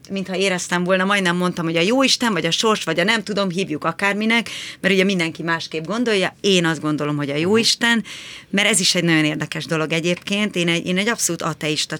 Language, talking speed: Hungarian, 215 wpm